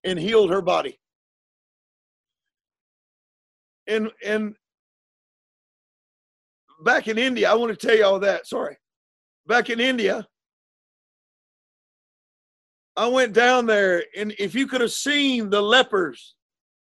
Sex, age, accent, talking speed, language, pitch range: male, 50-69, American, 115 wpm, English, 205-280 Hz